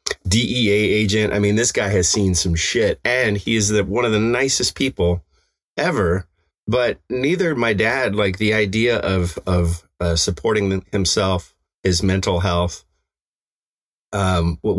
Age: 30-49